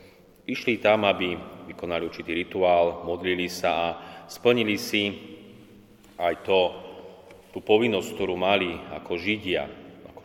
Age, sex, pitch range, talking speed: 30-49, male, 85-100 Hz, 115 wpm